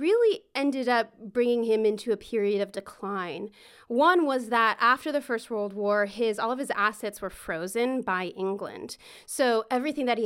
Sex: female